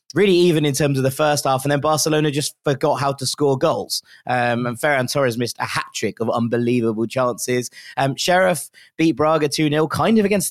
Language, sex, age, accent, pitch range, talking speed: English, male, 20-39, British, 125-155 Hz, 200 wpm